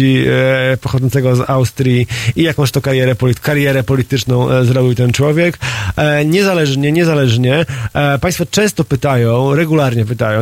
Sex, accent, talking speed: male, native, 140 wpm